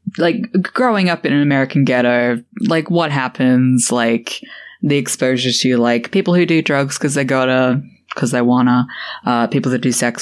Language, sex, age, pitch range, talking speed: English, female, 10-29, 125-160 Hz, 175 wpm